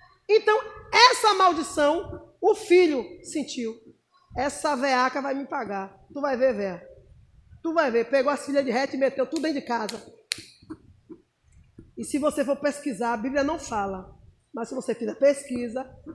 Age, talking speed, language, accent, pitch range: 20-39, 160 wpm, Portuguese, Brazilian, 265-350 Hz